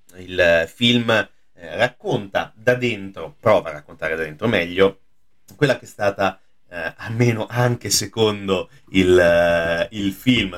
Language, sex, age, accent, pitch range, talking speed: Italian, male, 30-49, native, 95-120 Hz, 135 wpm